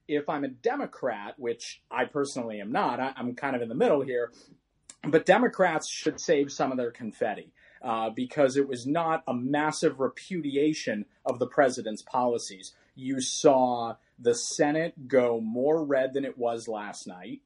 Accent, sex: American, male